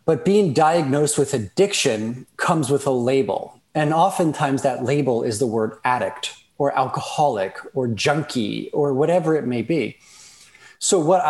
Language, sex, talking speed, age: English, male, 150 wpm, 30-49